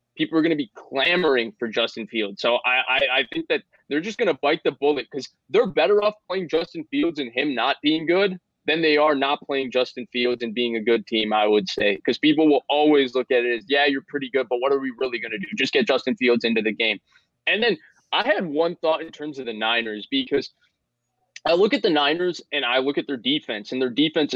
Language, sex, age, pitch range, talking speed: English, male, 20-39, 125-155 Hz, 250 wpm